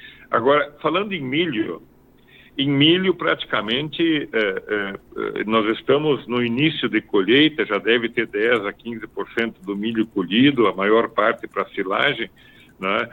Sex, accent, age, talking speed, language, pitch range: male, Brazilian, 60-79, 130 wpm, Portuguese, 110-145 Hz